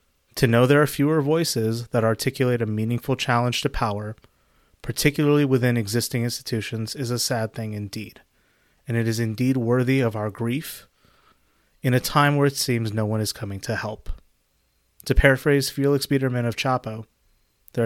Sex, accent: male, American